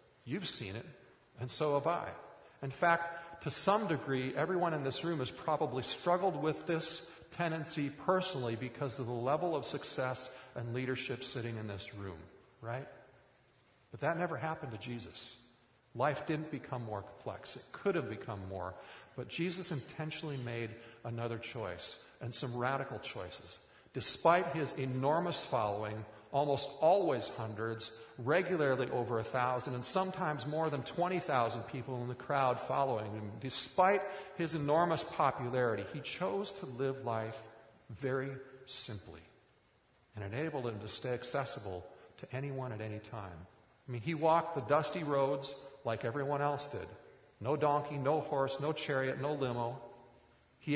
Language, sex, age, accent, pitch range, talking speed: English, male, 50-69, American, 120-160 Hz, 150 wpm